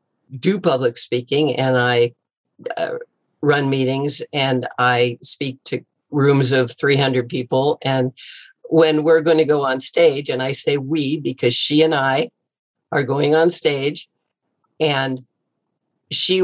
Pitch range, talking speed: 145-190 Hz, 140 wpm